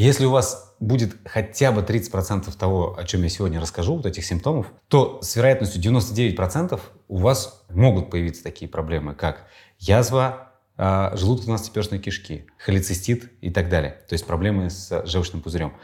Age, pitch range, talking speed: 30-49, 95-130 Hz, 160 wpm